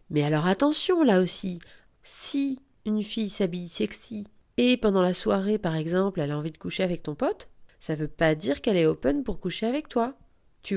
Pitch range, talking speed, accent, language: 170-210 Hz, 205 wpm, French, French